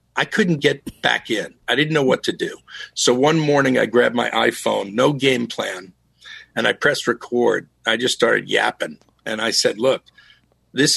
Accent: American